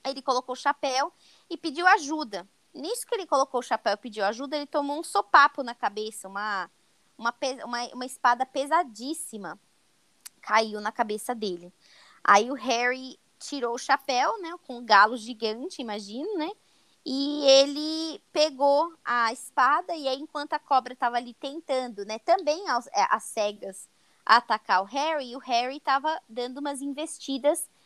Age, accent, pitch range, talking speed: 20-39, Brazilian, 235-295 Hz, 160 wpm